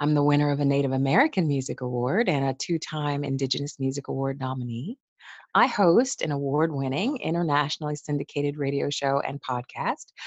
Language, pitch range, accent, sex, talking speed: English, 140-185 Hz, American, female, 150 wpm